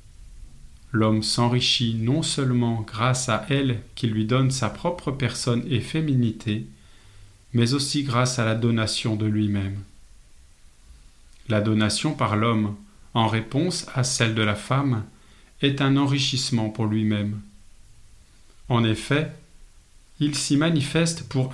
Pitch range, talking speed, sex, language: 110-140 Hz, 125 wpm, male, French